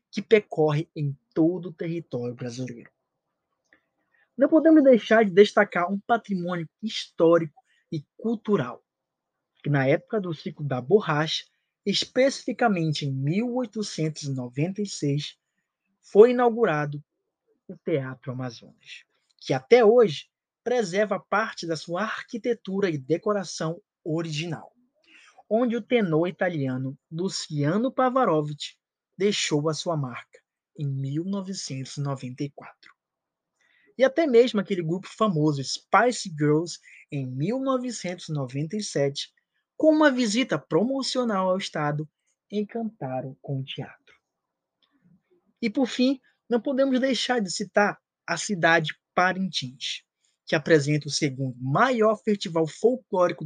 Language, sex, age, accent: Portuguese, male, 20-39, Brazilian